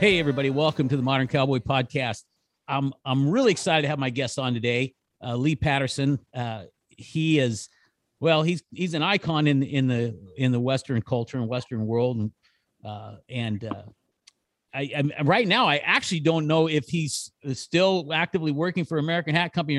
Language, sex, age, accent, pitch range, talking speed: English, male, 50-69, American, 120-155 Hz, 180 wpm